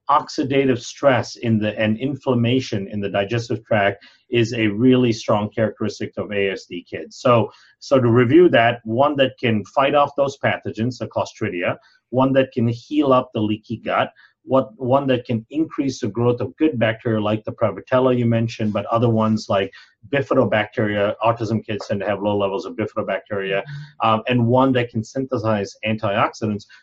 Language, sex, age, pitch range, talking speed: English, male, 40-59, 110-130 Hz, 170 wpm